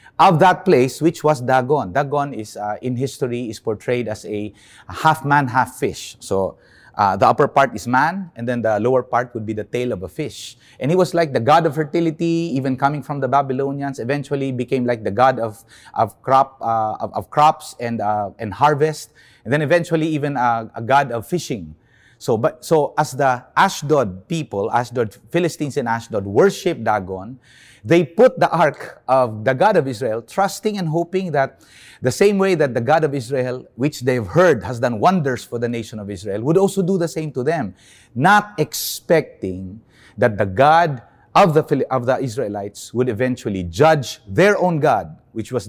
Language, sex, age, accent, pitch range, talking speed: English, male, 30-49, Filipino, 115-155 Hz, 190 wpm